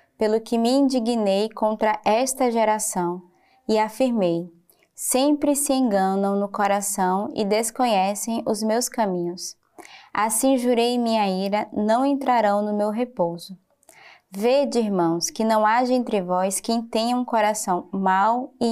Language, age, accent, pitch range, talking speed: Portuguese, 20-39, Brazilian, 200-255 Hz, 130 wpm